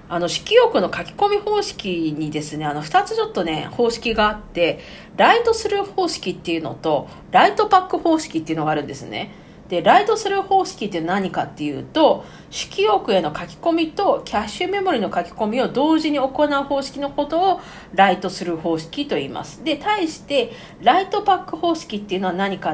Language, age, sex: Japanese, 50-69, female